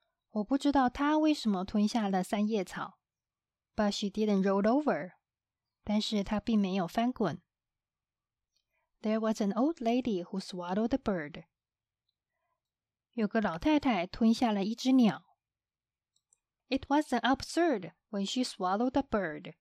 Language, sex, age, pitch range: Chinese, female, 20-39, 195-255 Hz